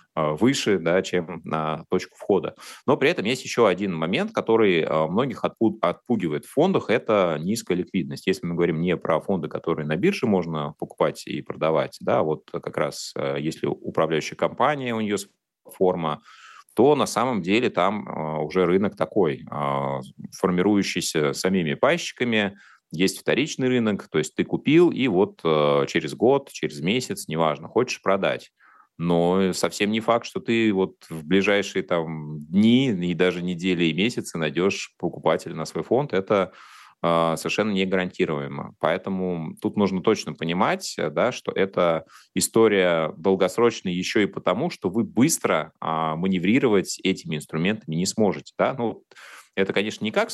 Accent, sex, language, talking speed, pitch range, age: native, male, Russian, 150 wpm, 80-100 Hz, 30-49